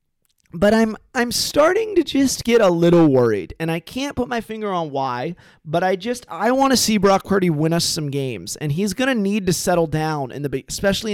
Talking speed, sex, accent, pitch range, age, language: 225 wpm, male, American, 150-200 Hz, 30-49, English